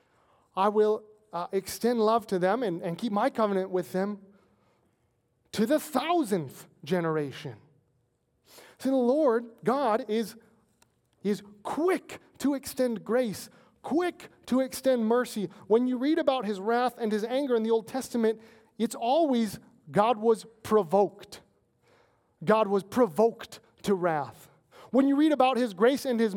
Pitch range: 155-235 Hz